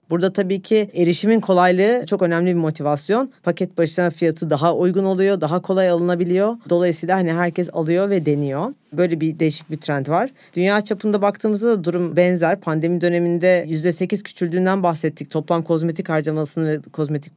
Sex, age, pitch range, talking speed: female, 40-59, 155-190 Hz, 160 wpm